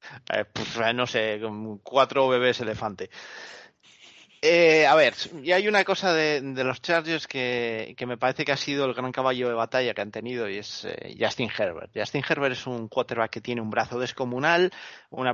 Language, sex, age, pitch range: Spanish, male, 30-49, 120-145 Hz